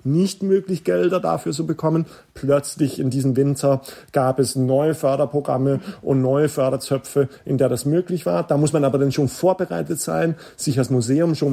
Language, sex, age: German, male, 40-59